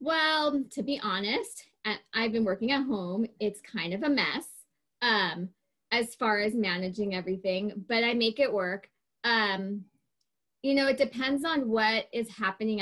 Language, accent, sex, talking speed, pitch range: English, American, female, 160 wpm, 195-230 Hz